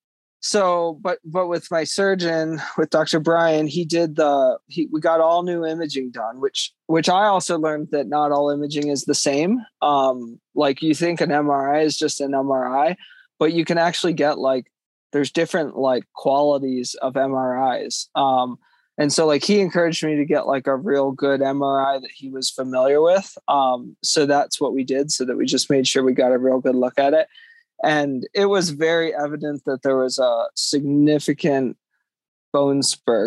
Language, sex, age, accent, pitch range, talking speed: English, male, 20-39, American, 135-170 Hz, 190 wpm